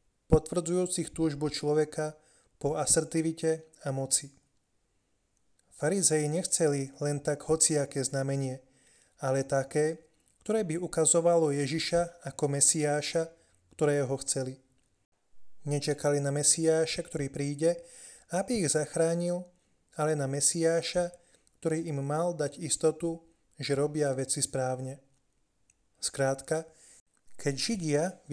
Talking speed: 100 wpm